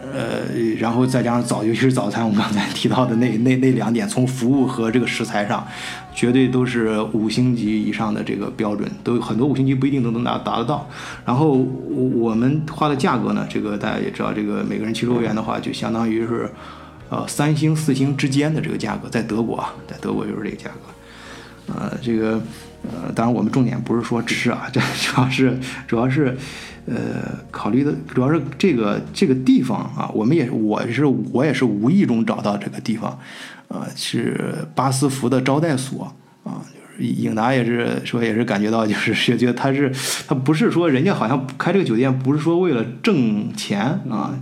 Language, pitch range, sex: Chinese, 115-135 Hz, male